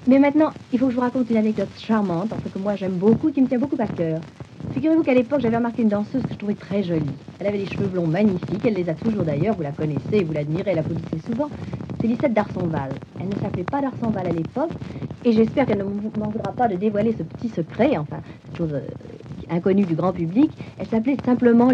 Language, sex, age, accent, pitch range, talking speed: French, female, 50-69, French, 170-245 Hz, 235 wpm